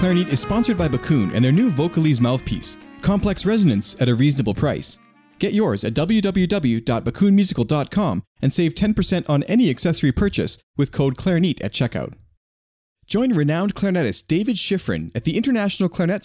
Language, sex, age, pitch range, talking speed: English, male, 30-49, 125-185 Hz, 150 wpm